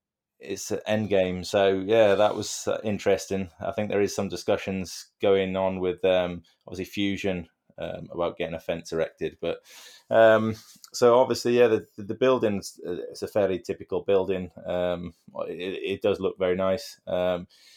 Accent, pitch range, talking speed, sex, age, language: British, 95-110 Hz, 160 wpm, male, 20-39, English